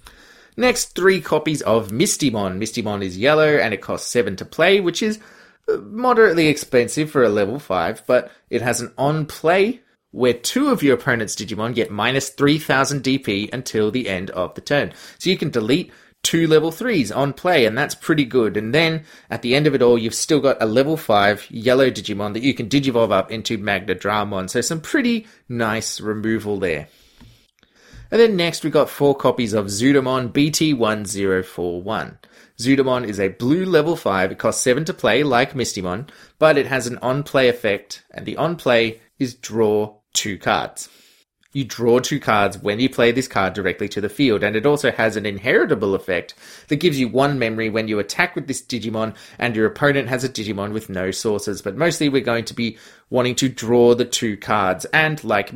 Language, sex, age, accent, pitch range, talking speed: English, male, 20-39, Australian, 110-145 Hz, 190 wpm